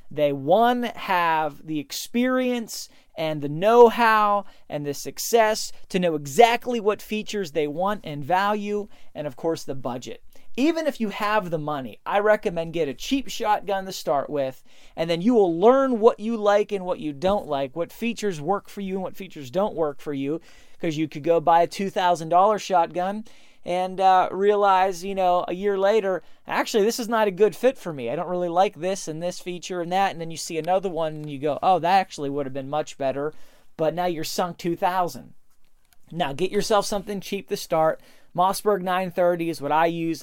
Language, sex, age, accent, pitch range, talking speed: English, male, 30-49, American, 150-205 Hz, 200 wpm